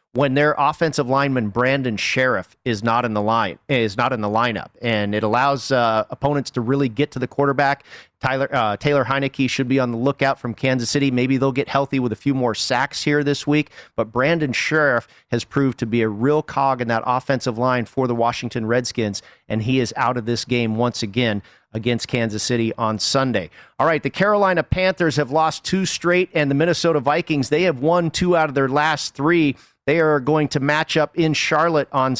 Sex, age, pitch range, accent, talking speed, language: male, 40-59, 125-155 Hz, American, 210 wpm, English